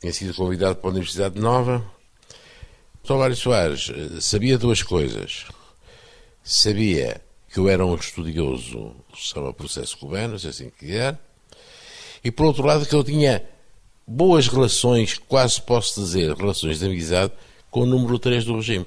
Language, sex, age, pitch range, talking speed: Portuguese, male, 60-79, 90-120 Hz, 145 wpm